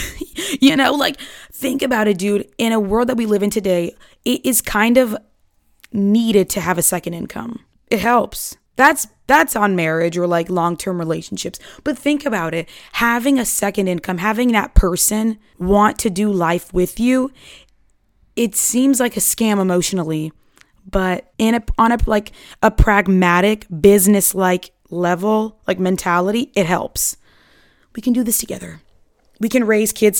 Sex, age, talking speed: female, 20-39, 165 wpm